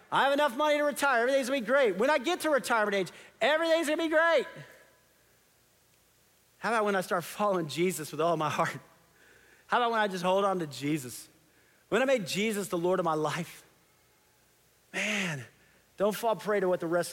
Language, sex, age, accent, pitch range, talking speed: English, male, 40-59, American, 155-215 Hz, 200 wpm